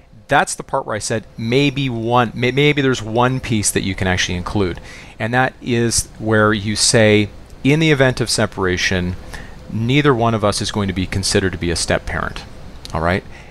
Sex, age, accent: male, 40-59, American